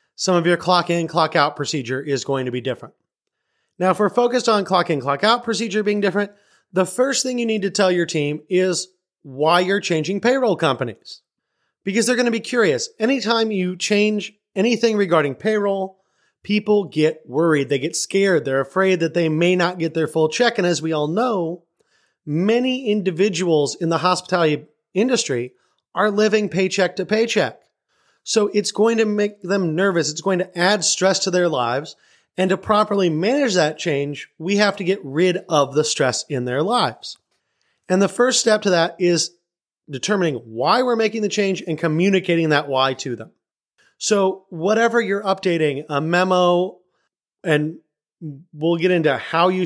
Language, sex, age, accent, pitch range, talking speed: English, male, 30-49, American, 160-210 Hz, 175 wpm